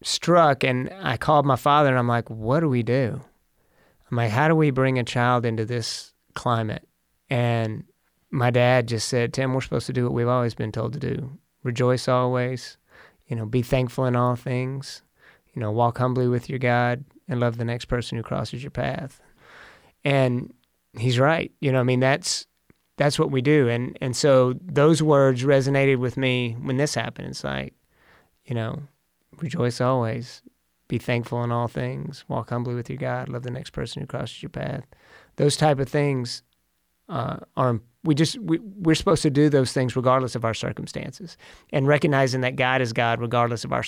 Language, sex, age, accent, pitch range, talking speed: English, male, 30-49, American, 120-135 Hz, 195 wpm